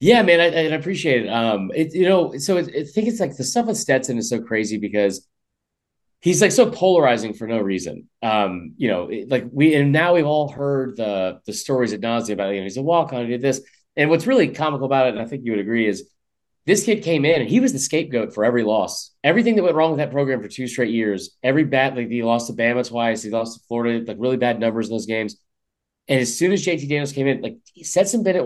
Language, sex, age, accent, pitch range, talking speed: English, male, 30-49, American, 115-165 Hz, 265 wpm